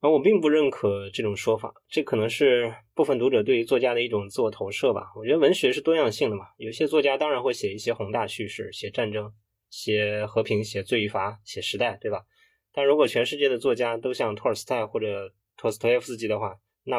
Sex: male